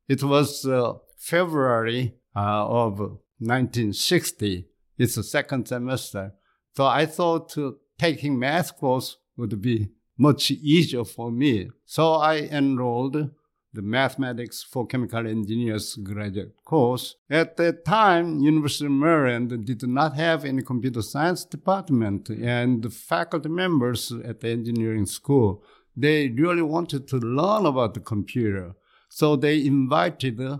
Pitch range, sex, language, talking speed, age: 115-145 Hz, male, English, 125 wpm, 60-79